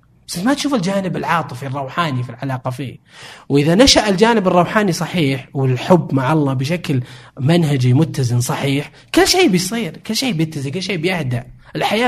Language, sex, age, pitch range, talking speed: Arabic, male, 20-39, 125-165 Hz, 155 wpm